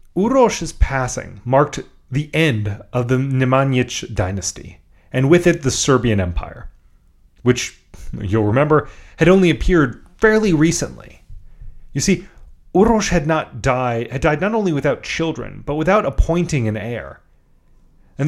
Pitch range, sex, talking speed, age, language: 110-155 Hz, male, 130 wpm, 30-49, English